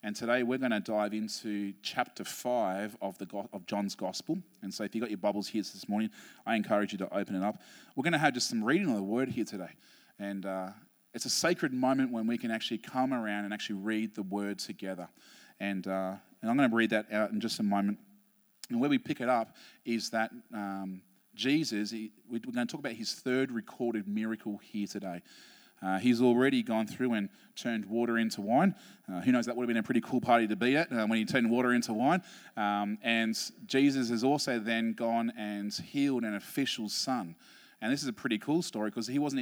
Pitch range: 105-135 Hz